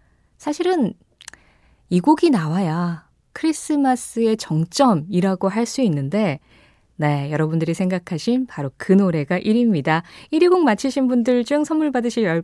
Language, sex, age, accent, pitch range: Korean, female, 20-39, native, 175-270 Hz